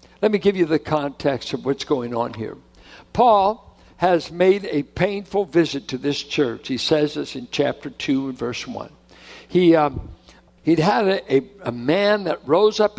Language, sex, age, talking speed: English, male, 60-79, 185 wpm